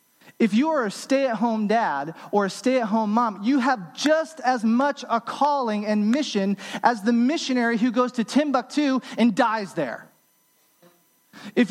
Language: English